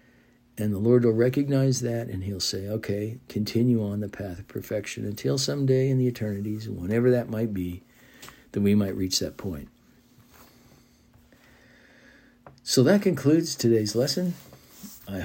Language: English